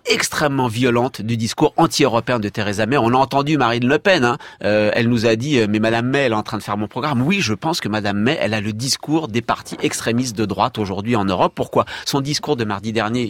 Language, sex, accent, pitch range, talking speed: French, male, French, 120-165 Hz, 255 wpm